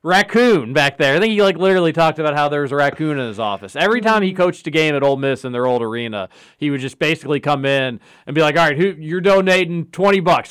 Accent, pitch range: American, 130-170 Hz